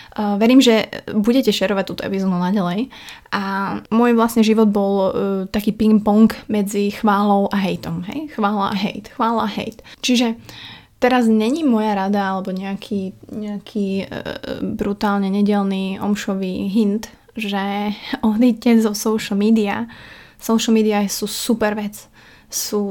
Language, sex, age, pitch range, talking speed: Slovak, female, 20-39, 200-225 Hz, 135 wpm